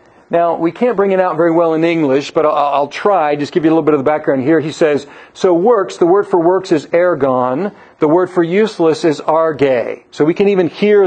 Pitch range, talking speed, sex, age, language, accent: 150-200 Hz, 240 wpm, male, 50-69, English, American